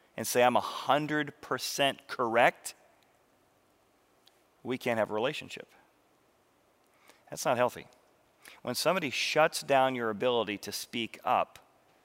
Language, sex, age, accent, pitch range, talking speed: English, male, 40-59, American, 120-175 Hz, 110 wpm